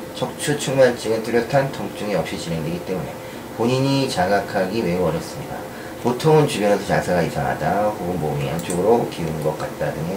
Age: 40-59